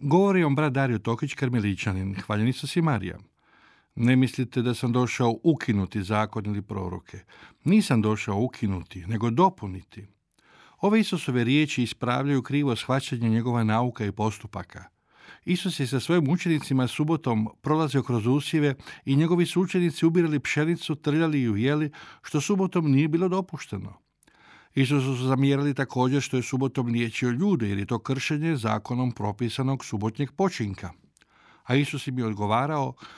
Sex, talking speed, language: male, 140 wpm, Croatian